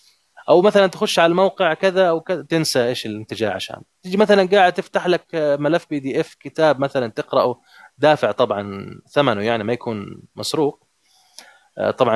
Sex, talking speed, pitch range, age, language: male, 150 wpm, 120-160 Hz, 20-39, Arabic